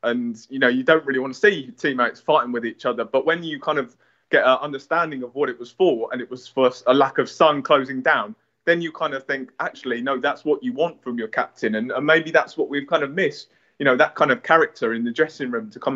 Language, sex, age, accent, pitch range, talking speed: English, male, 20-39, British, 125-155 Hz, 270 wpm